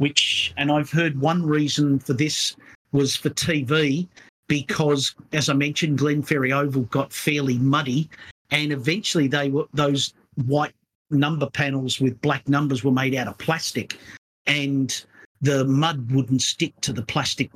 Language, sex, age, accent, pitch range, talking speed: English, male, 50-69, Australian, 125-145 Hz, 150 wpm